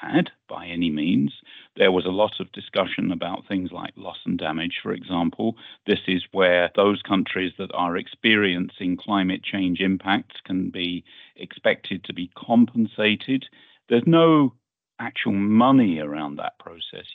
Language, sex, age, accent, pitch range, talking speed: English, male, 50-69, British, 90-115 Hz, 135 wpm